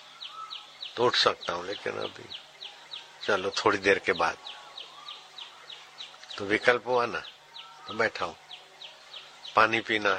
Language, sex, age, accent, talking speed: Hindi, male, 50-69, native, 110 wpm